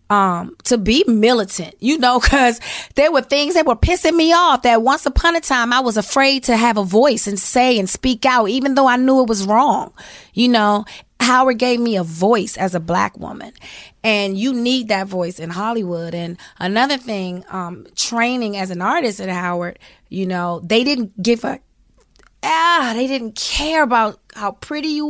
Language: English